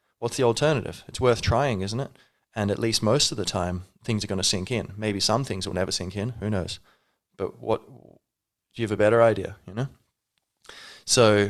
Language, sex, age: English, male, 20-39